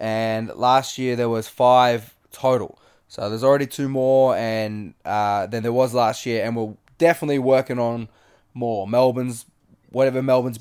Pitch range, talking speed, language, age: 110-125 Hz, 160 wpm, English, 20-39